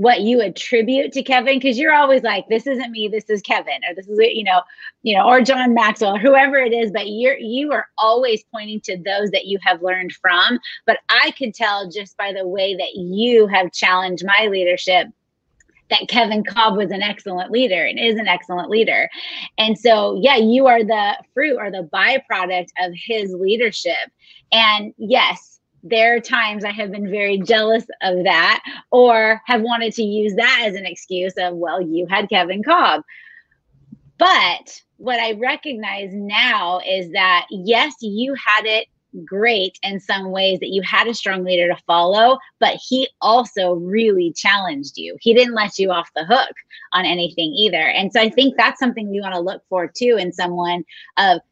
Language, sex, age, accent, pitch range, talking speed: English, female, 30-49, American, 190-235 Hz, 185 wpm